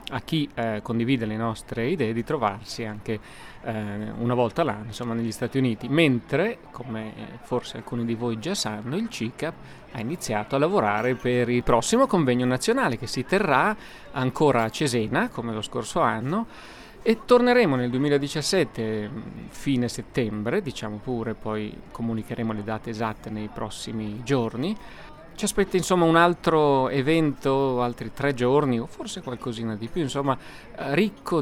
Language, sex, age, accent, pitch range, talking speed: Italian, male, 30-49, native, 115-145 Hz, 150 wpm